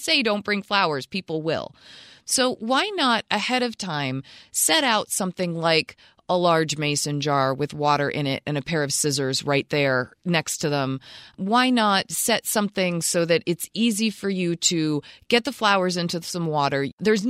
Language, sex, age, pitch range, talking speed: English, female, 30-49, 170-215 Hz, 180 wpm